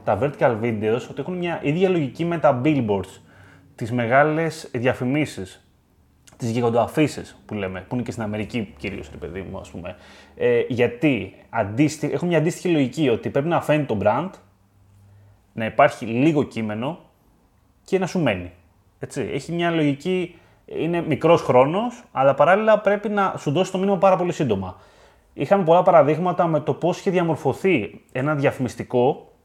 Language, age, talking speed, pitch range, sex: Greek, 20-39, 155 wpm, 115-170 Hz, male